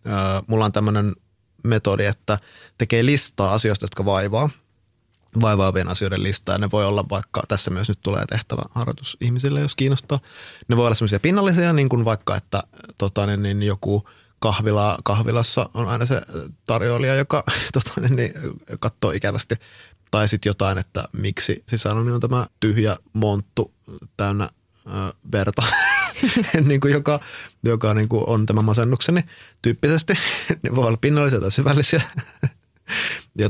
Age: 20-39